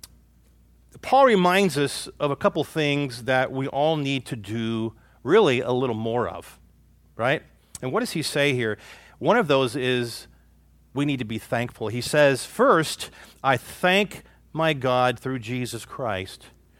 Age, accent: 40-59, American